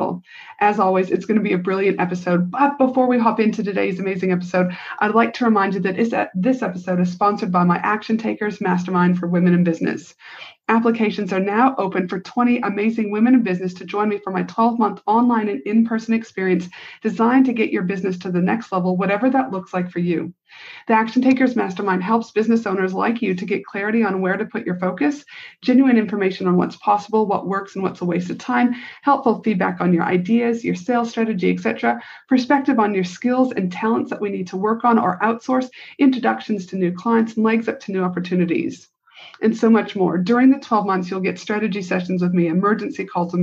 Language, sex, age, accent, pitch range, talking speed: English, female, 40-59, American, 185-230 Hz, 210 wpm